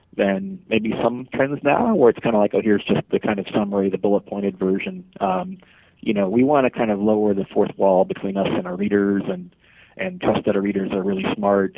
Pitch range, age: 95-115 Hz, 40-59